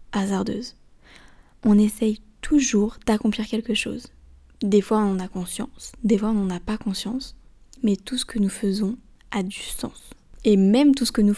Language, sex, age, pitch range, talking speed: French, female, 20-39, 205-235 Hz, 185 wpm